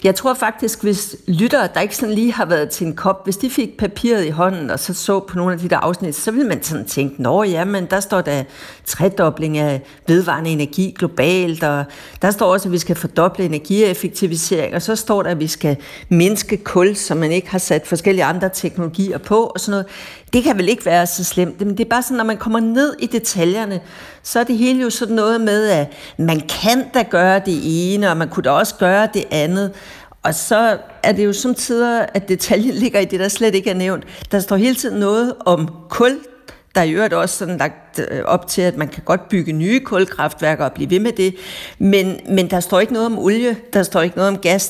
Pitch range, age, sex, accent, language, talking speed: 170-210 Hz, 60-79, female, native, Danish, 235 wpm